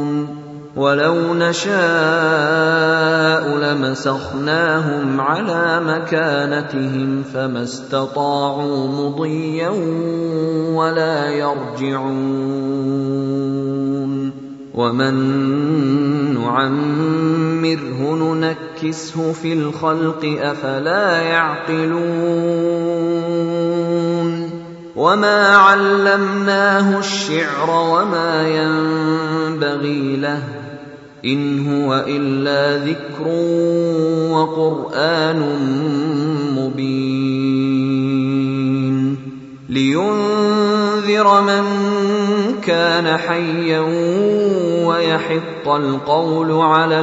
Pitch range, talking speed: 135-165 Hz, 35 wpm